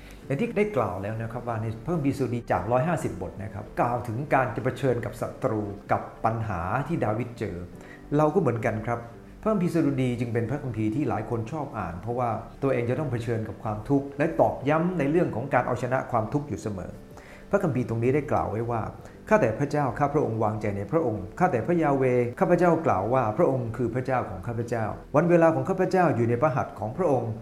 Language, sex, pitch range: English, male, 110-145 Hz